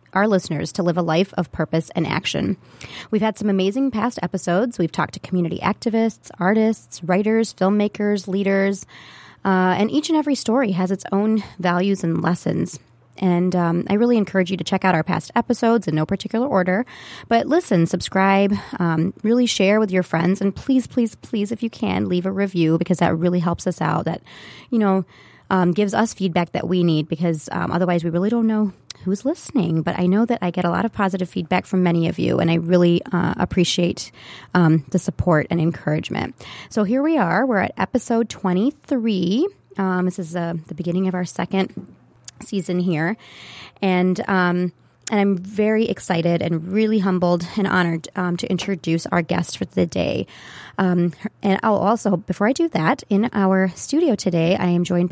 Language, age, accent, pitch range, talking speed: English, 30-49, American, 175-215 Hz, 190 wpm